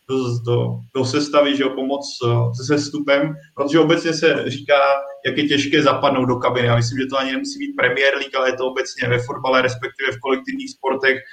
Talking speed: 195 wpm